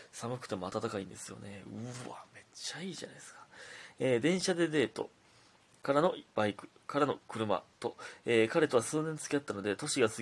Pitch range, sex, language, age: 105-125 Hz, male, Japanese, 20-39